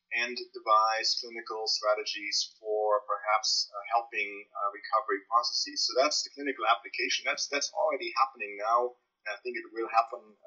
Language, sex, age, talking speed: English, male, 30-49, 155 wpm